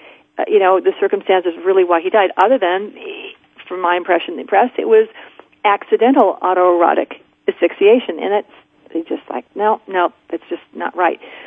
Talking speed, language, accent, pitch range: 160 wpm, English, American, 180-235 Hz